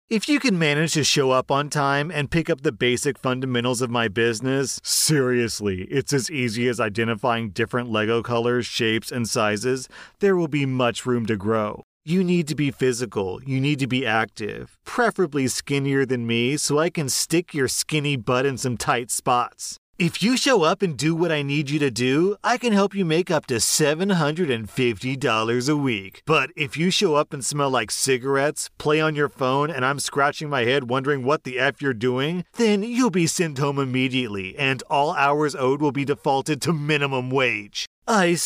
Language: English